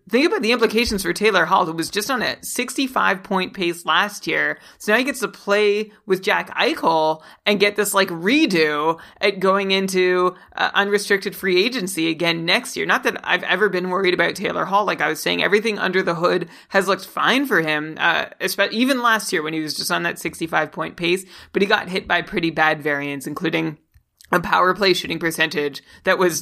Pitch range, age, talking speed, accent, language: 165-200 Hz, 30-49, 205 wpm, American, English